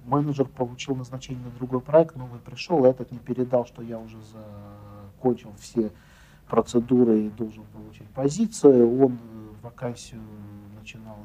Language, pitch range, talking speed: Ukrainian, 105-130 Hz, 130 wpm